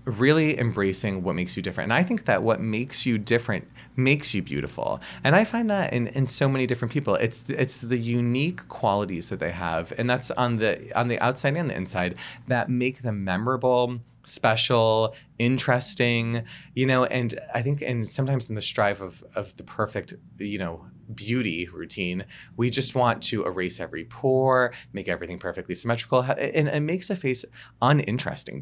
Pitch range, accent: 110-135 Hz, American